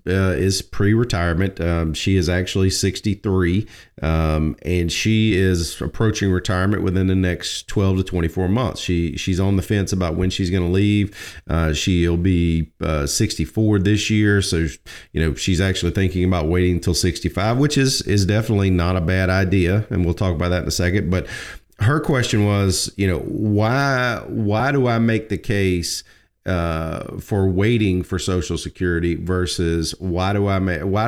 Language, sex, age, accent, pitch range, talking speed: English, male, 40-59, American, 90-105 Hz, 160 wpm